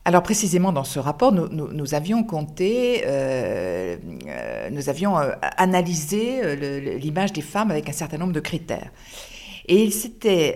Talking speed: 155 wpm